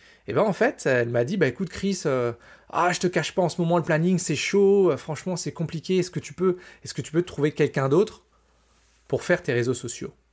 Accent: French